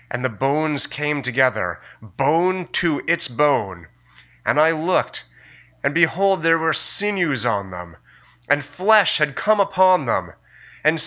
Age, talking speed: 30-49, 140 wpm